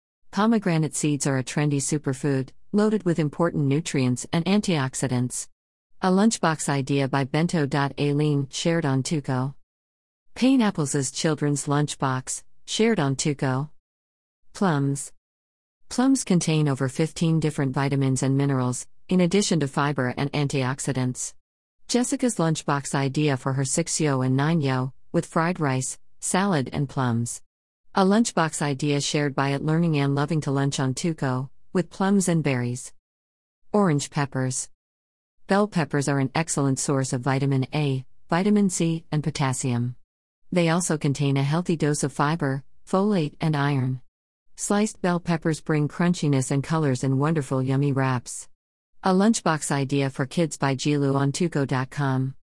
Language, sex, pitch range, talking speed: English, female, 130-165 Hz, 135 wpm